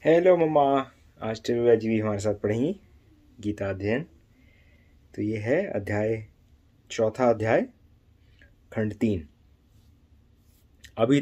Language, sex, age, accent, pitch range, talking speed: English, male, 20-39, Indian, 95-130 Hz, 100 wpm